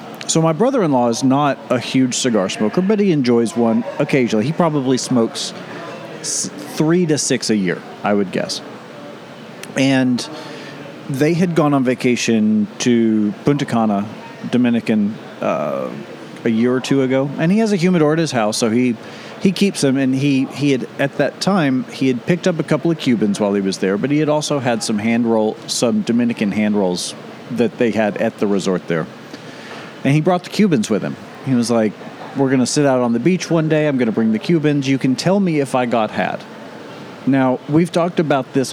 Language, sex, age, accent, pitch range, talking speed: English, male, 40-59, American, 115-160 Hz, 205 wpm